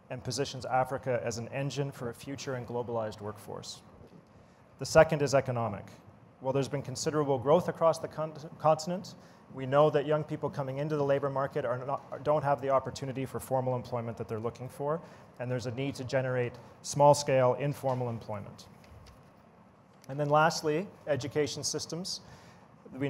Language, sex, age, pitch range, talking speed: English, male, 30-49, 125-145 Hz, 155 wpm